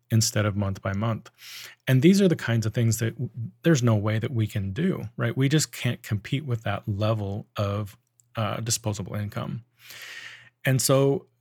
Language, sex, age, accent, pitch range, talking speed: English, male, 30-49, American, 110-135 Hz, 180 wpm